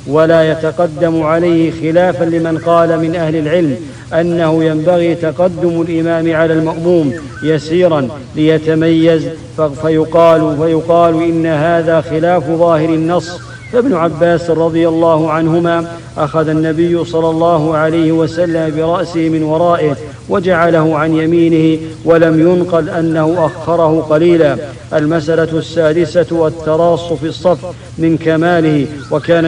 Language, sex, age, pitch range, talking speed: English, male, 50-69, 160-170 Hz, 110 wpm